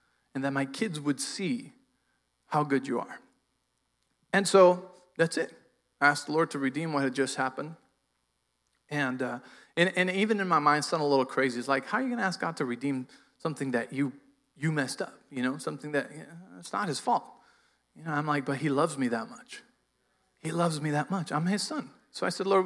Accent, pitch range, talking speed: American, 140-200 Hz, 225 wpm